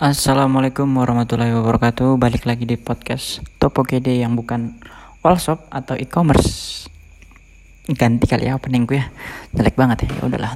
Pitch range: 115-135 Hz